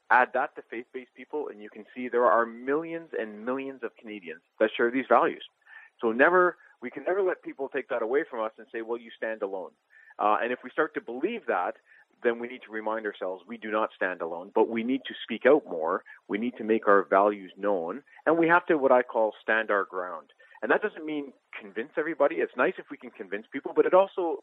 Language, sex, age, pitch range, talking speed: English, male, 40-59, 110-165 Hz, 240 wpm